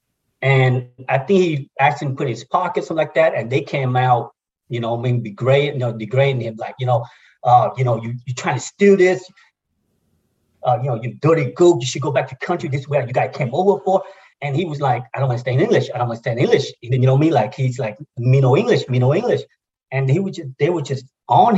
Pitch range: 120-140 Hz